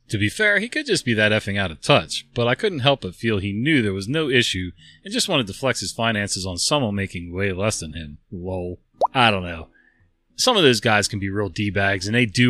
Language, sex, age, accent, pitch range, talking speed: English, male, 30-49, American, 95-125 Hz, 255 wpm